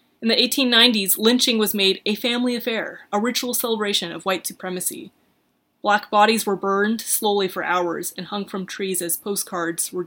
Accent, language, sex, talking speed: American, English, female, 175 wpm